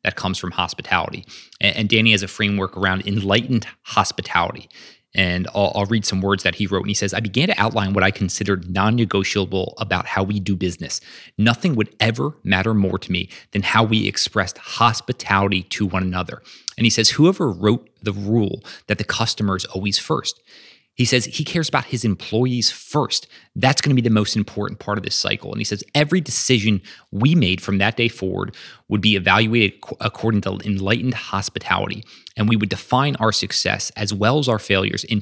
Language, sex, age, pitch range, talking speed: English, male, 30-49, 95-115 Hz, 195 wpm